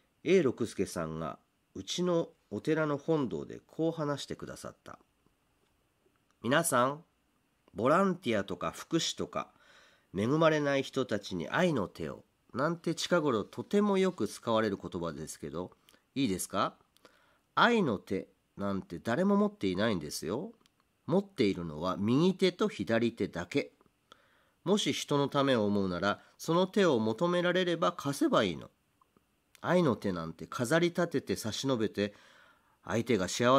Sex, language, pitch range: male, Japanese, 100-155 Hz